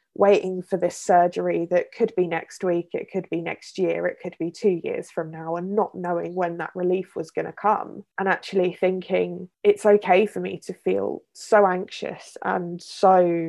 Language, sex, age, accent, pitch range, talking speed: English, female, 20-39, British, 180-200 Hz, 195 wpm